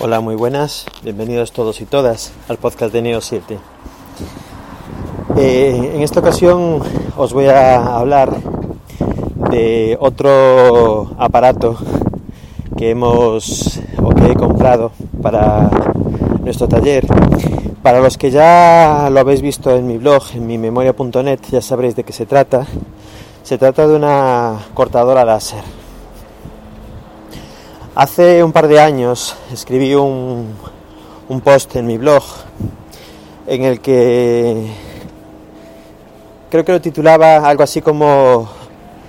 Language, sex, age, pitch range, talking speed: Spanish, male, 30-49, 115-145 Hz, 120 wpm